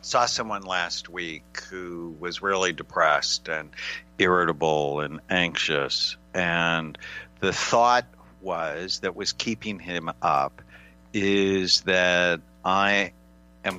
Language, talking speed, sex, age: English, 110 wpm, male, 60-79